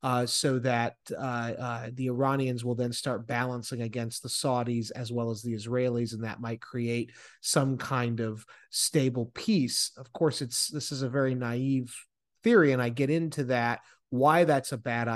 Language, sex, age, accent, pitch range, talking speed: English, male, 30-49, American, 120-135 Hz, 180 wpm